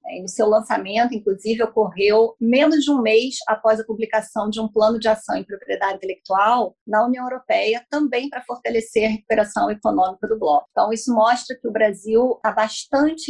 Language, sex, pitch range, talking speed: Portuguese, female, 215-260 Hz, 175 wpm